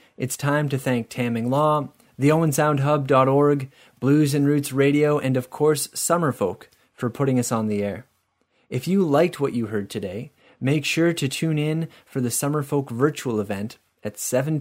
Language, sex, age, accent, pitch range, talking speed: English, male, 30-49, American, 120-150 Hz, 170 wpm